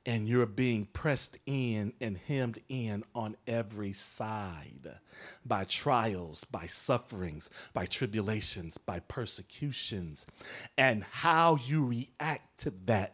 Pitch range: 110-145 Hz